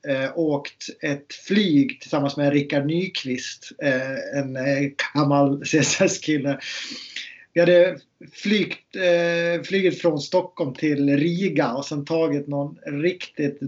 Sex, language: male, Swedish